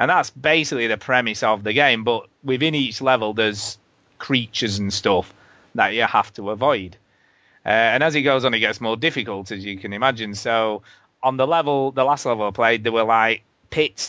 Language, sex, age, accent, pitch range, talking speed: English, male, 30-49, British, 105-140 Hz, 205 wpm